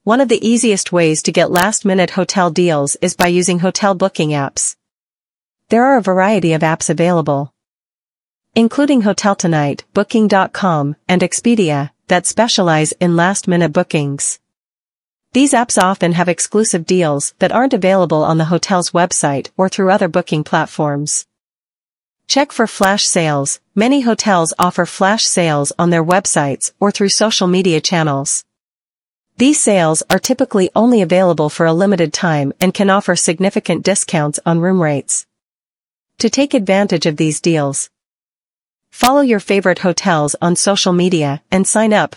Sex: female